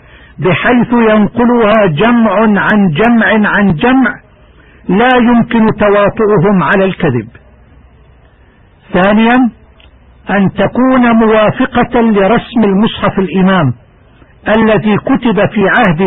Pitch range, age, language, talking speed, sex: 180-225 Hz, 50-69, Arabic, 85 wpm, male